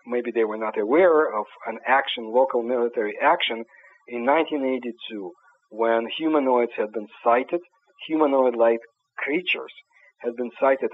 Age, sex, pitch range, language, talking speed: 50-69, male, 115-150 Hz, English, 130 wpm